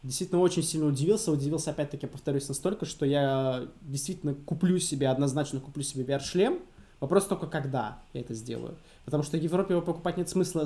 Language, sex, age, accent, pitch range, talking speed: Russian, male, 20-39, native, 140-170 Hz, 175 wpm